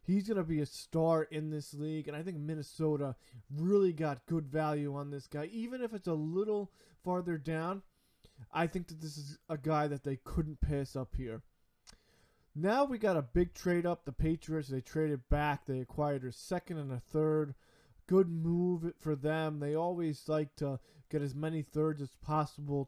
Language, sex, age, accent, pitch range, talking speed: English, male, 20-39, American, 140-165 Hz, 190 wpm